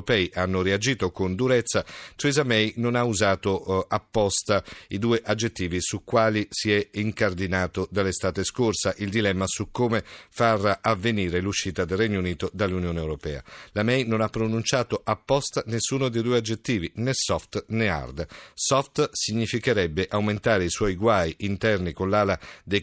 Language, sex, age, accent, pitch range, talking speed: Italian, male, 50-69, native, 95-120 Hz, 150 wpm